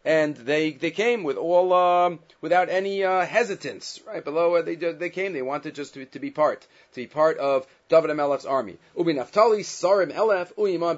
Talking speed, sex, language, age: 195 wpm, male, English, 40-59